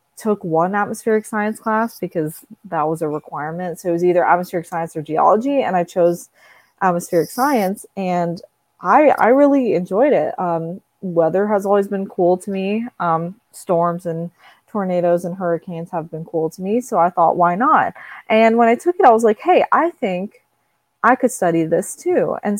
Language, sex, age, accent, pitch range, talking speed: English, female, 20-39, American, 165-205 Hz, 185 wpm